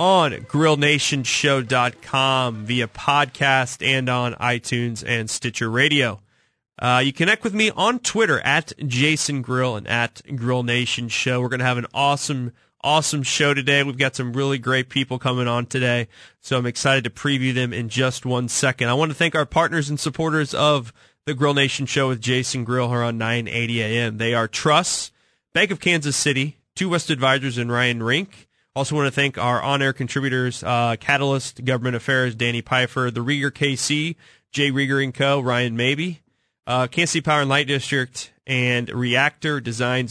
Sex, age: male, 20-39